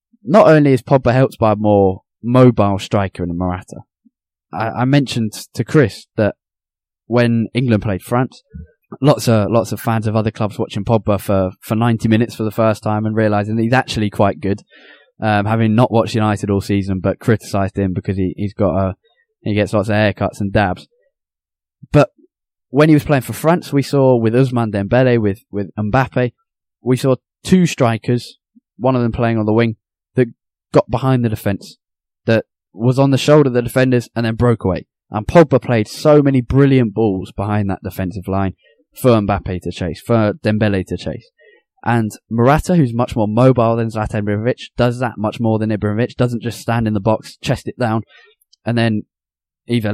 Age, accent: 10-29, British